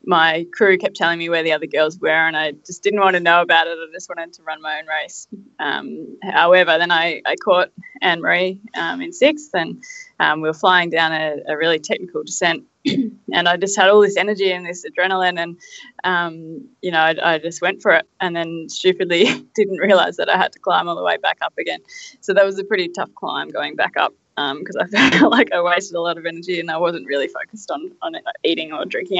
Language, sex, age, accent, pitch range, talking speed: English, female, 20-39, Australian, 175-210 Hz, 235 wpm